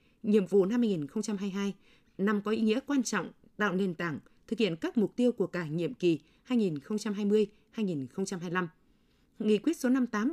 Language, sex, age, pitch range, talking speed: Vietnamese, female, 20-39, 185-235 Hz, 230 wpm